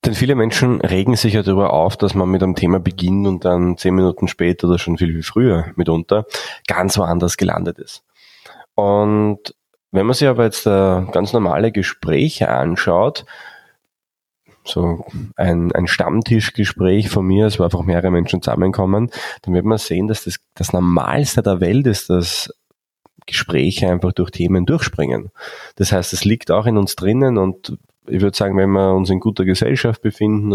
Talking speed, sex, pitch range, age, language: 175 wpm, male, 85-105 Hz, 20-39, German